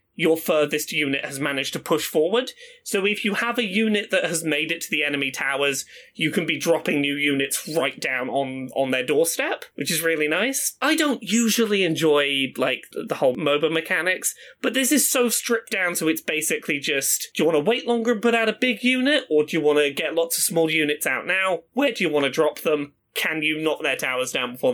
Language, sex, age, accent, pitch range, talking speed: English, male, 30-49, British, 150-240 Hz, 230 wpm